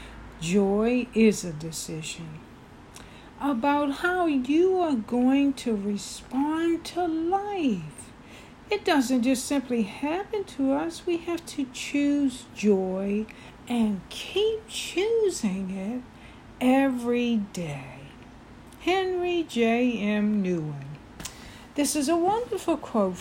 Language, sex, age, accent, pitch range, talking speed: English, female, 60-79, American, 205-290 Hz, 100 wpm